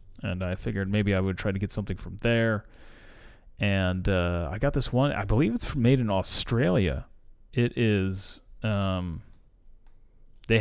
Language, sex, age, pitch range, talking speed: English, male, 30-49, 95-110 Hz, 160 wpm